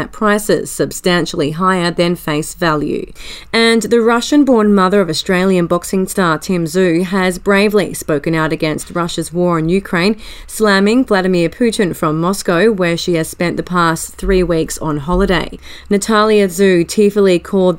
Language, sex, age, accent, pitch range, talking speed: English, female, 30-49, Australian, 165-200 Hz, 150 wpm